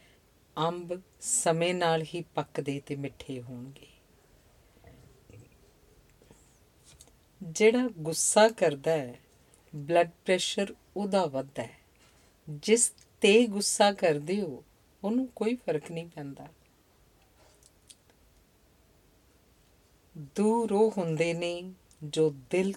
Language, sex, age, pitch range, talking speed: Punjabi, female, 50-69, 125-175 Hz, 85 wpm